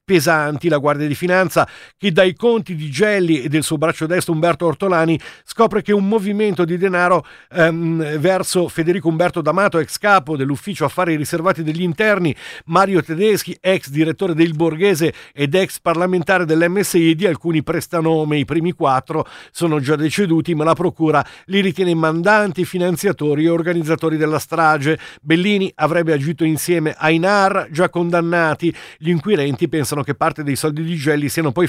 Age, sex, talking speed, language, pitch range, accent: 50-69, male, 155 wpm, Italian, 155-180 Hz, native